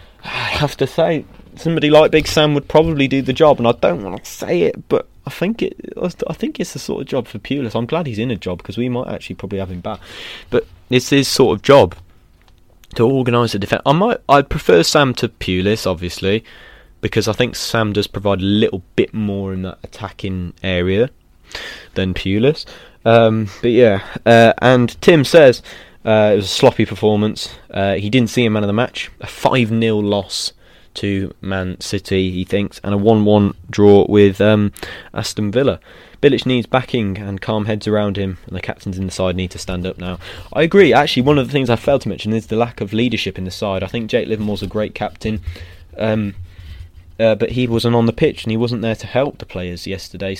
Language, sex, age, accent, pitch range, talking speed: English, male, 20-39, British, 95-120 Hz, 215 wpm